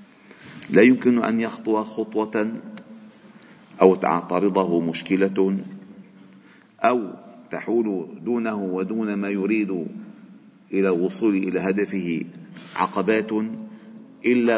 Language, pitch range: Arabic, 95-145 Hz